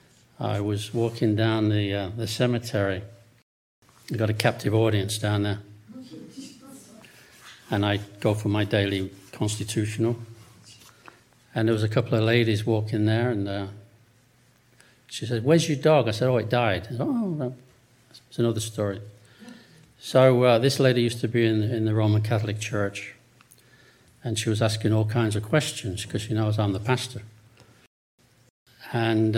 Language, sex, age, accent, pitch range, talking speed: English, male, 60-79, British, 110-125 Hz, 155 wpm